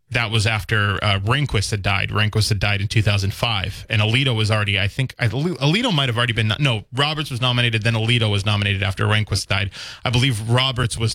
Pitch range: 105-120 Hz